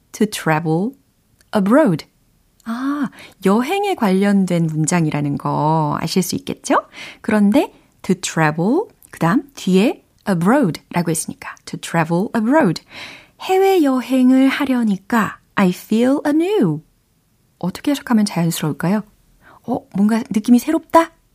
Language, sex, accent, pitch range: Korean, female, native, 170-260 Hz